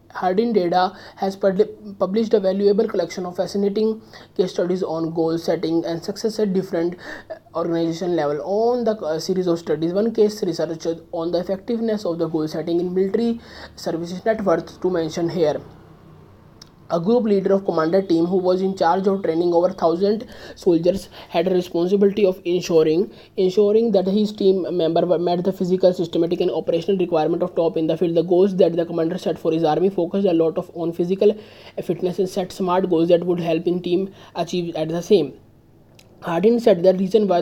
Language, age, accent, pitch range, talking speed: English, 20-39, Indian, 170-200 Hz, 180 wpm